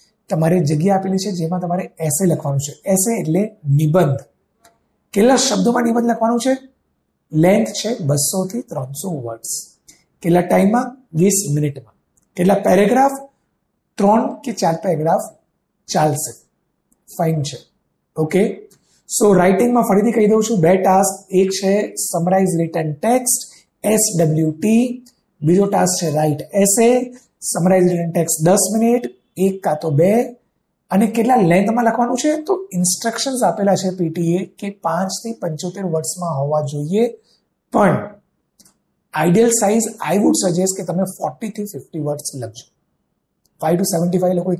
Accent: native